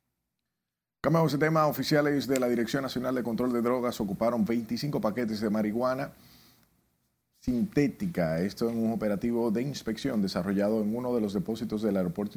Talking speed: 155 wpm